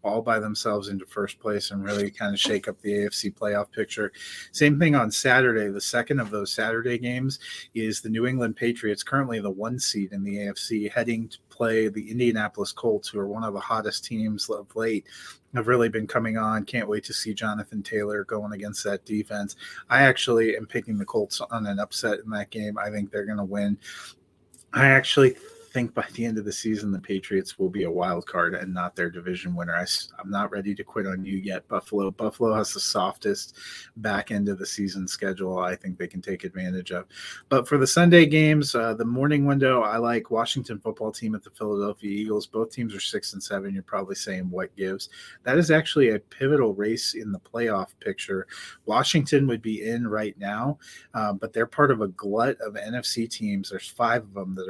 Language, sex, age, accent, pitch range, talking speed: English, male, 30-49, American, 100-115 Hz, 210 wpm